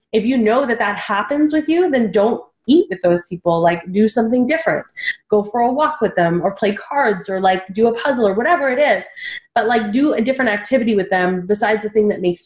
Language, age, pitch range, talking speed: English, 20-39, 215-280 Hz, 235 wpm